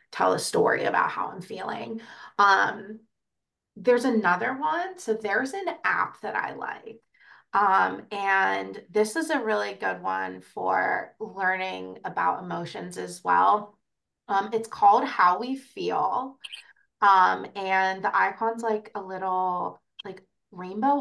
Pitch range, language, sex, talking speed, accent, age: 185-245 Hz, English, female, 135 wpm, American, 20-39